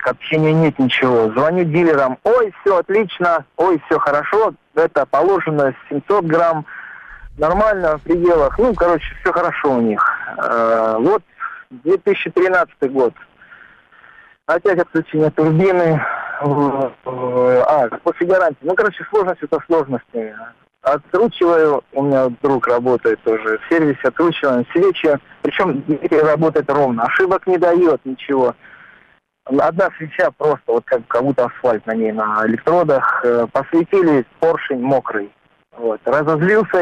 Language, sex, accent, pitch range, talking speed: Russian, male, native, 130-175 Hz, 115 wpm